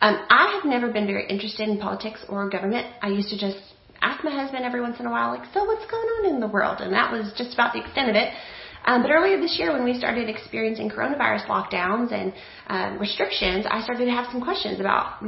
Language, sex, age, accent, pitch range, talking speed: English, female, 30-49, American, 195-255 Hz, 240 wpm